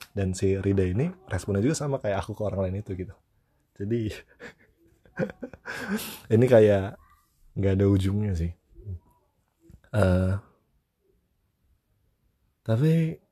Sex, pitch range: male, 90-110 Hz